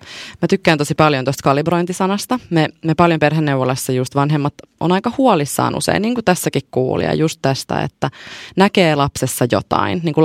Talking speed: 165 wpm